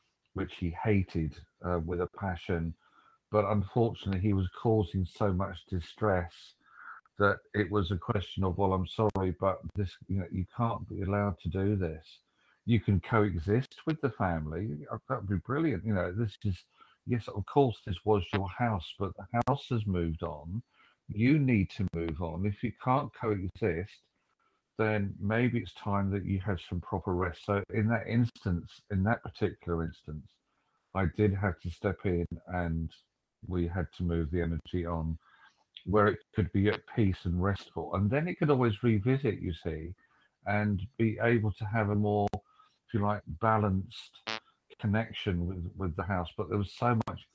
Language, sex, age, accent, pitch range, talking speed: English, male, 50-69, British, 90-110 Hz, 175 wpm